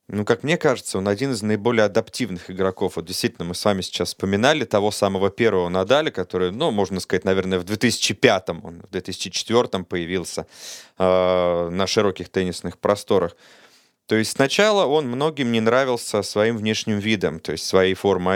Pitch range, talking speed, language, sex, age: 95-135 Hz, 165 wpm, Russian, male, 30-49